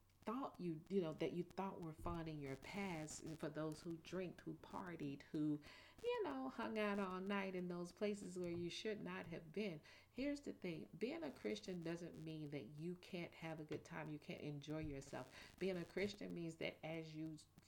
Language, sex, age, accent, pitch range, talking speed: English, female, 40-59, American, 160-205 Hz, 205 wpm